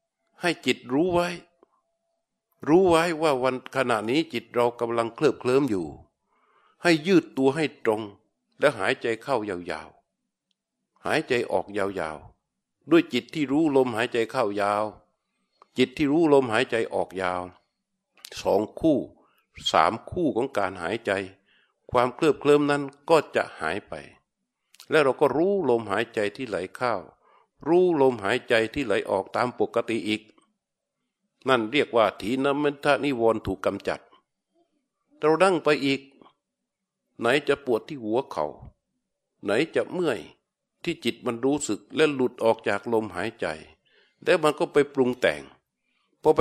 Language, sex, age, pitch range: Thai, male, 60-79, 110-155 Hz